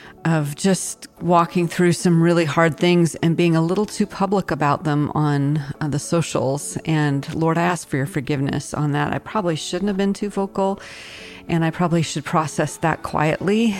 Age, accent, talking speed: 40-59, American, 185 wpm